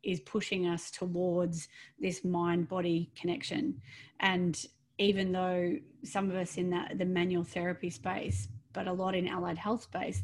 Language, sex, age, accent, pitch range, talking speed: English, female, 30-49, Australian, 175-200 Hz, 145 wpm